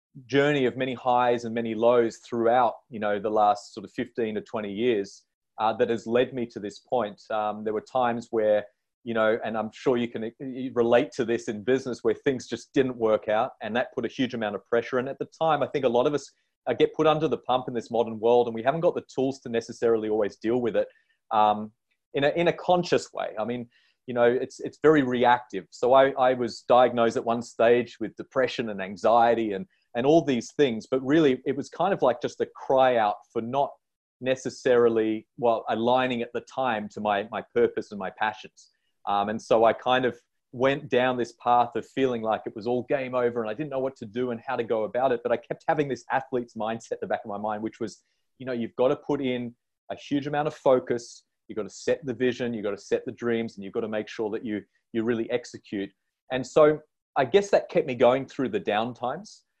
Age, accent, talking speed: 30-49, Australian, 240 wpm